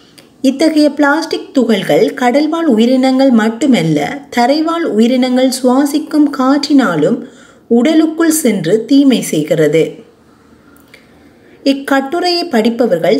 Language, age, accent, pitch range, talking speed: Tamil, 30-49, native, 220-280 Hz, 75 wpm